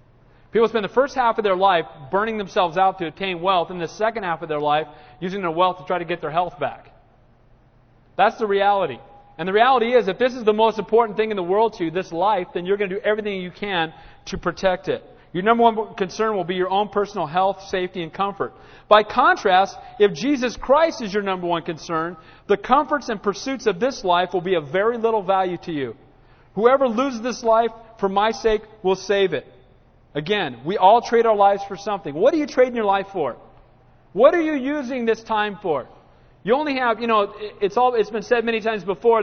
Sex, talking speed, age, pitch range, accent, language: male, 225 wpm, 40-59, 175-225 Hz, American, English